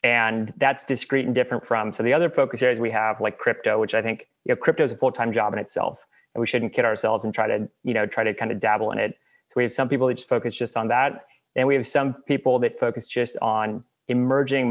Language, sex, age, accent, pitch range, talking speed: English, male, 30-49, American, 110-135 Hz, 265 wpm